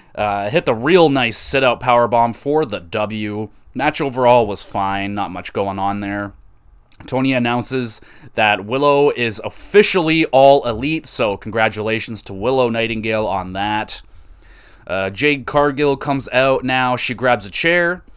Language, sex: English, male